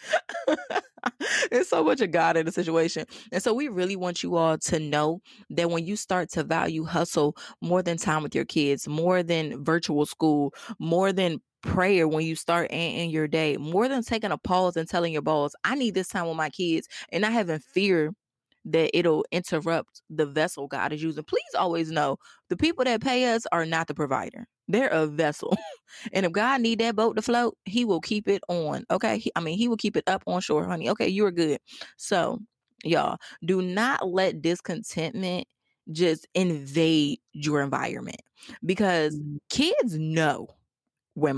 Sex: female